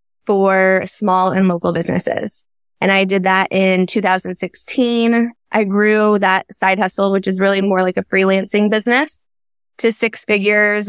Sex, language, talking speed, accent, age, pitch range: female, English, 150 wpm, American, 20-39, 190-210 Hz